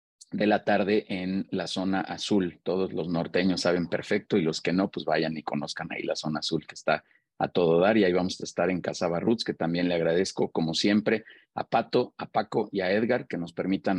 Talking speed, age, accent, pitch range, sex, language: 225 wpm, 40-59, Mexican, 90-110 Hz, male, Spanish